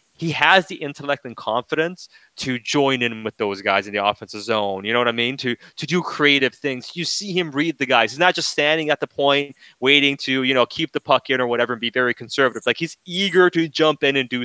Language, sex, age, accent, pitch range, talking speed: English, male, 20-39, American, 110-145 Hz, 255 wpm